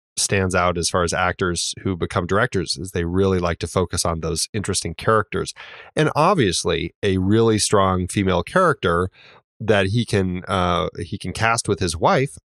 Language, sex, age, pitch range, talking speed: English, male, 30-49, 90-105 Hz, 175 wpm